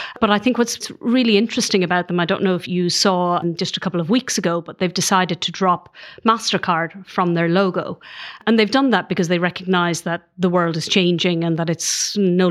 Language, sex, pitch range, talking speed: English, female, 175-205 Hz, 215 wpm